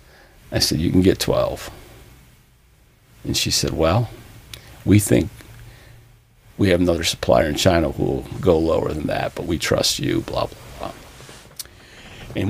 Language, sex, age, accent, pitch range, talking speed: English, male, 50-69, American, 95-125 Hz, 155 wpm